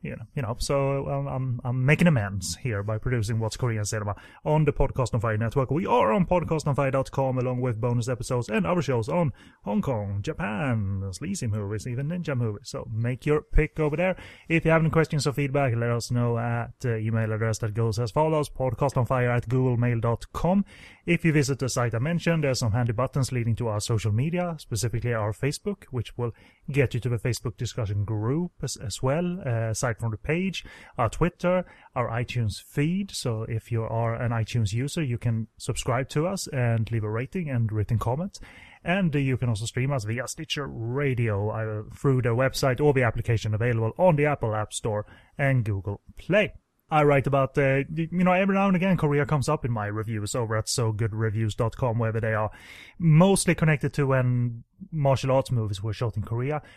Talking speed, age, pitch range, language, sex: 200 wpm, 30-49, 115-150 Hz, English, male